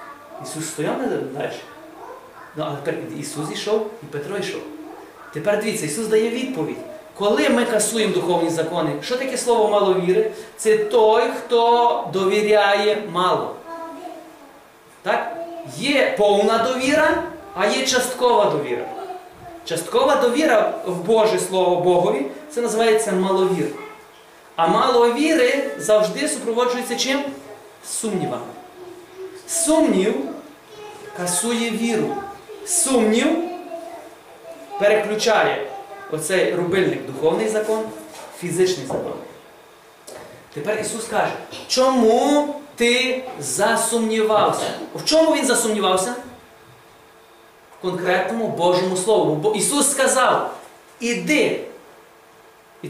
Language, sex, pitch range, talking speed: Ukrainian, male, 210-320 Hz, 95 wpm